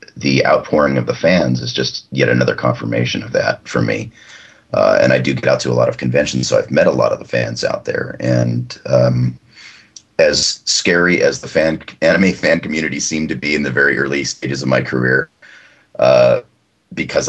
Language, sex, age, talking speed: English, male, 30-49, 200 wpm